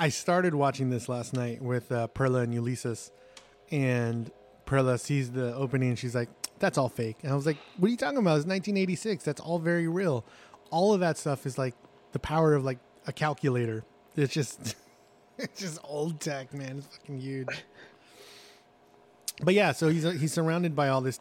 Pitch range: 120-150 Hz